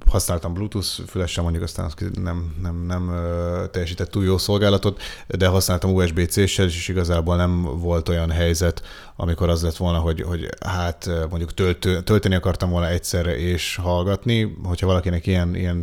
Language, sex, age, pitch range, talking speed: Hungarian, male, 30-49, 85-95 Hz, 150 wpm